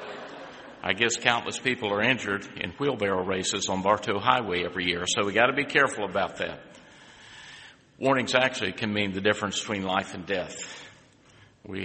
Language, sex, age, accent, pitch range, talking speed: English, male, 50-69, American, 95-120 Hz, 165 wpm